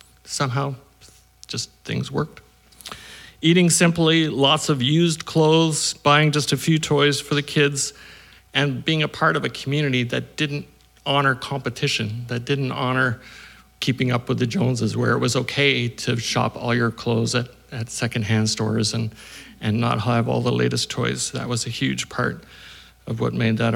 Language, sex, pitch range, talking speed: English, male, 120-150 Hz, 170 wpm